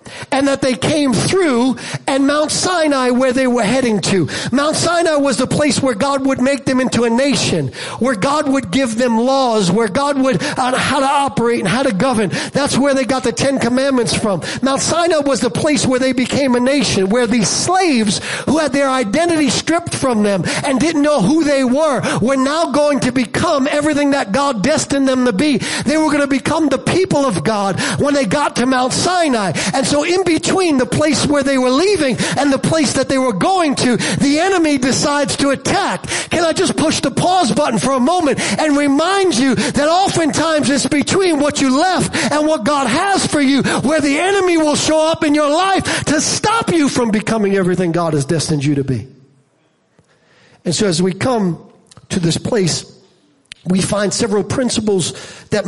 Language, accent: English, American